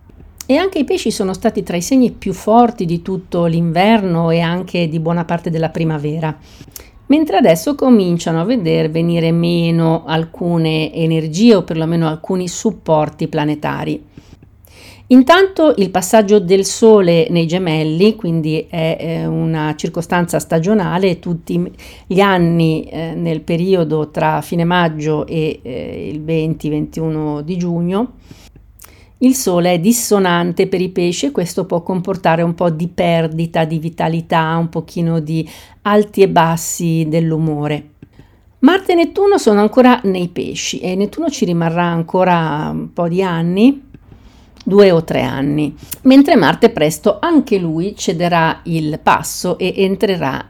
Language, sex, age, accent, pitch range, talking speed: Italian, female, 50-69, native, 160-205 Hz, 135 wpm